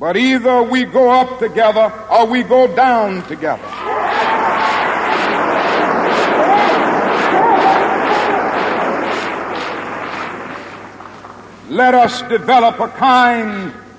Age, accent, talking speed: 60-79, American, 70 wpm